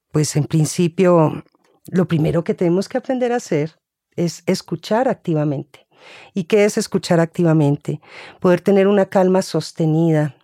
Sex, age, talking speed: female, 40-59, 140 wpm